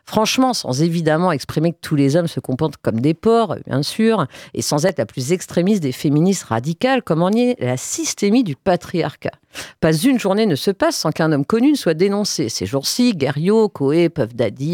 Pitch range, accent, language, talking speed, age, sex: 145-220 Hz, French, French, 210 wpm, 50-69, female